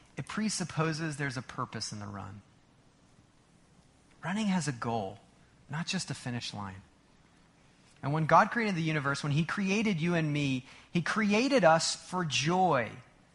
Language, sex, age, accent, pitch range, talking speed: English, male, 30-49, American, 130-195 Hz, 155 wpm